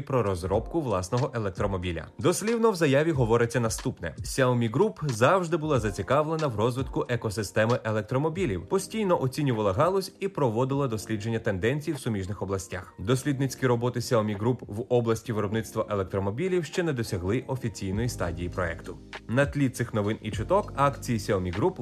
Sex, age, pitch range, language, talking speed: male, 30-49, 105-155 Hz, Ukrainian, 140 wpm